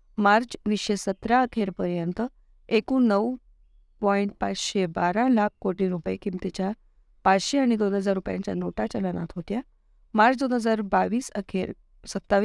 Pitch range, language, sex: 180-220 Hz, Marathi, female